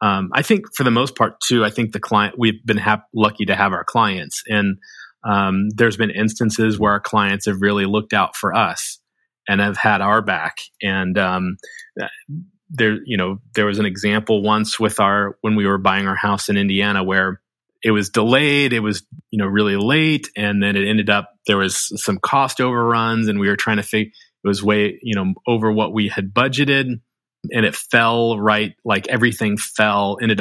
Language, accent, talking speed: English, American, 205 wpm